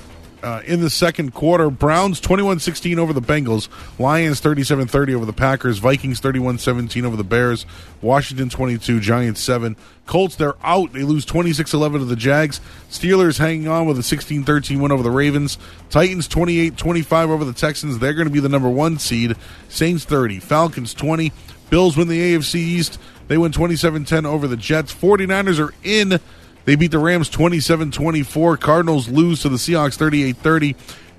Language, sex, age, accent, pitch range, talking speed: English, male, 20-39, American, 115-160 Hz, 165 wpm